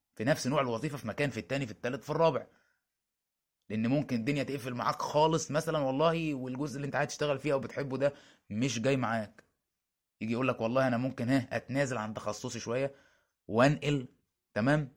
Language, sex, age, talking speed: Arabic, male, 20-39, 180 wpm